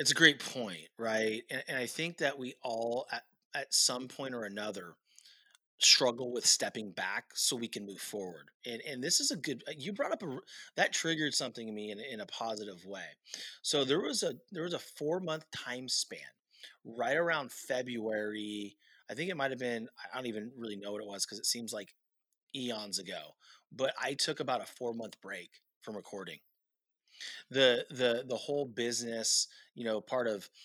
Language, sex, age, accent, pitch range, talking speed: English, male, 30-49, American, 105-130 Hz, 200 wpm